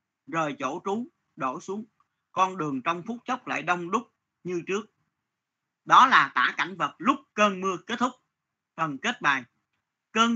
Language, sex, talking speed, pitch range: Vietnamese, male, 170 wpm, 150-210 Hz